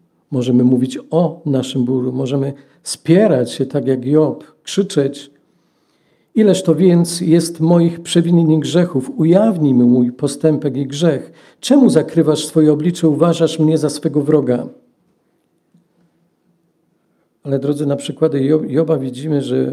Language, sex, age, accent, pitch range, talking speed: Polish, male, 50-69, native, 130-165 Hz, 125 wpm